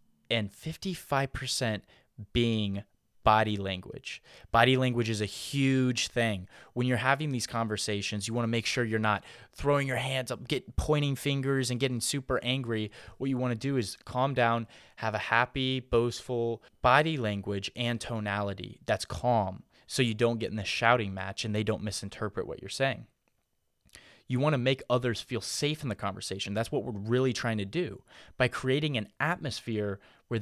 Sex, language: male, English